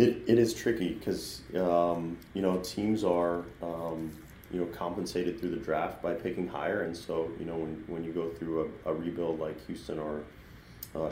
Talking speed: 195 wpm